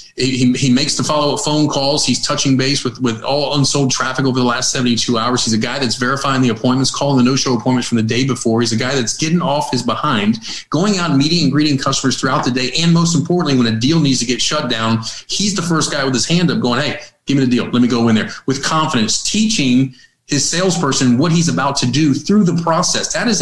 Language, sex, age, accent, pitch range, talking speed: English, male, 40-59, American, 125-150 Hz, 250 wpm